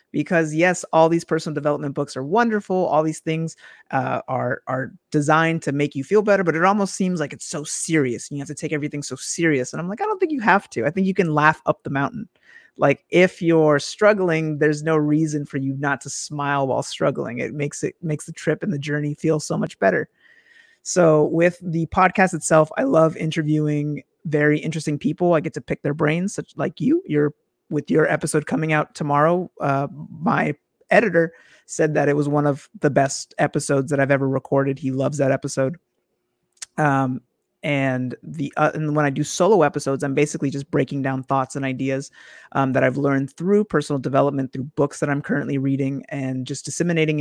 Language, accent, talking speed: English, American, 205 wpm